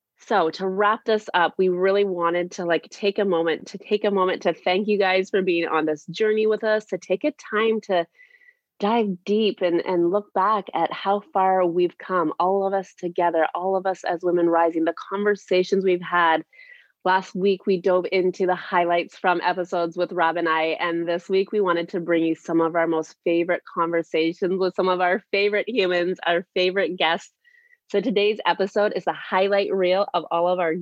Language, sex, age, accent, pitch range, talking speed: English, female, 30-49, American, 175-215 Hz, 205 wpm